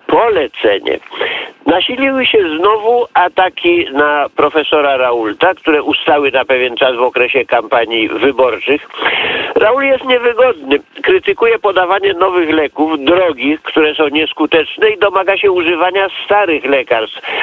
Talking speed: 115 wpm